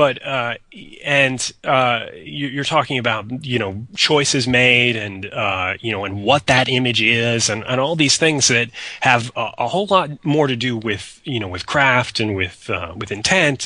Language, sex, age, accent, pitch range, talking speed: English, male, 30-49, American, 110-145 Hz, 200 wpm